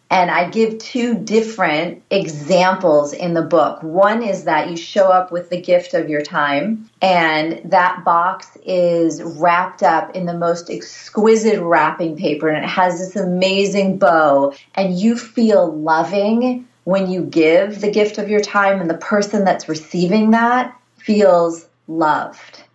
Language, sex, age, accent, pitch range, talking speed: English, female, 30-49, American, 165-200 Hz, 155 wpm